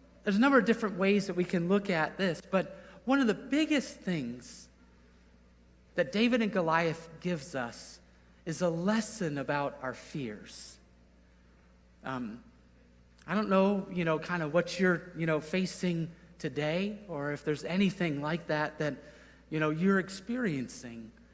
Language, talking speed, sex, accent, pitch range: English, 155 wpm, male, American, 150-195 Hz